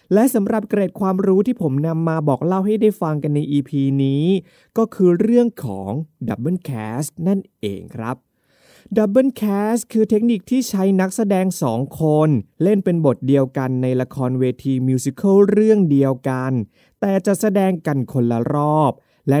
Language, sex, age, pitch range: Thai, male, 20-39, 135-190 Hz